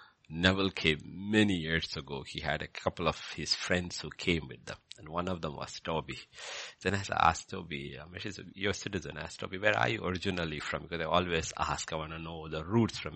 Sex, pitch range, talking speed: male, 80-110 Hz, 210 wpm